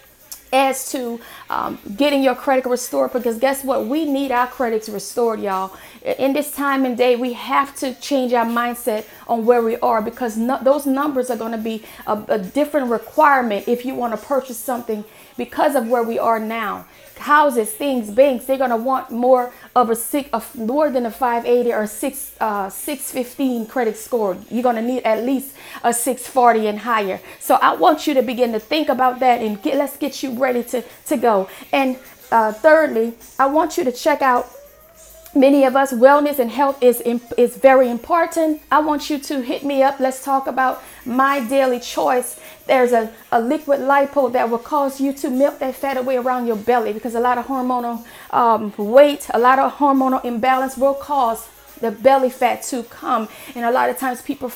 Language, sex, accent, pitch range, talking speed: English, female, American, 235-275 Hz, 195 wpm